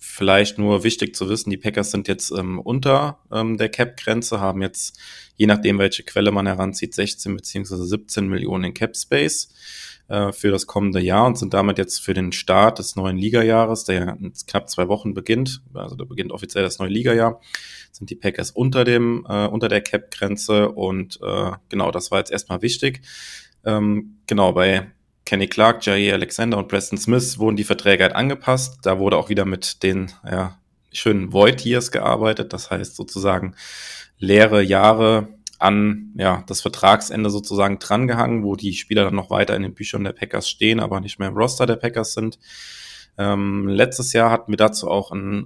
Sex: male